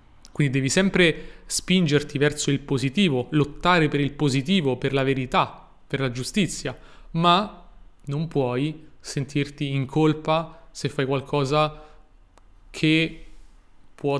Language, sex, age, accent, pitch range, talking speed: Italian, male, 30-49, native, 135-165 Hz, 120 wpm